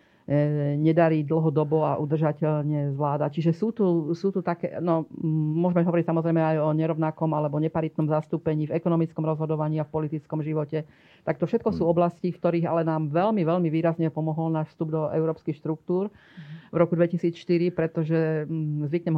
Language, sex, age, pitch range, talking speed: Slovak, female, 40-59, 155-170 Hz, 160 wpm